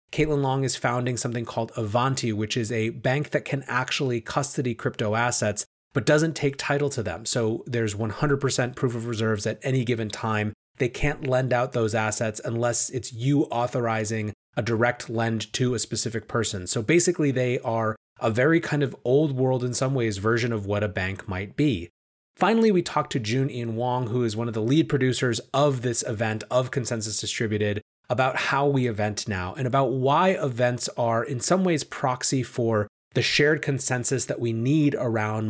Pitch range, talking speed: 115-140 Hz, 190 wpm